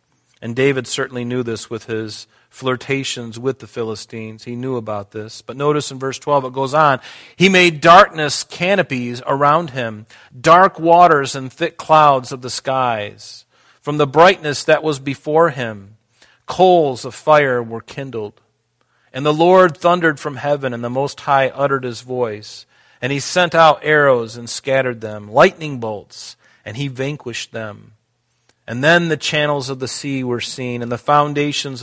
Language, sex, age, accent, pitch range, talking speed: English, male, 40-59, American, 115-145 Hz, 165 wpm